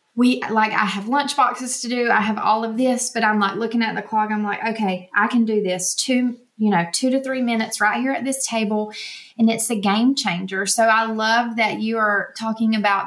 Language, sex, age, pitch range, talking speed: English, female, 20-39, 210-245 Hz, 240 wpm